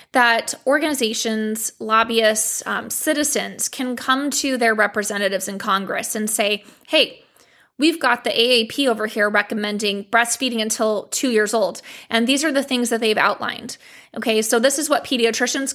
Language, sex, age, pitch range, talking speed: English, female, 20-39, 220-260 Hz, 155 wpm